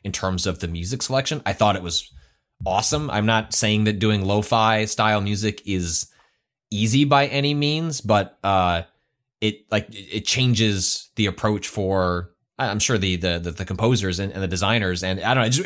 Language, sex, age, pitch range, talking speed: English, male, 20-39, 90-115 Hz, 190 wpm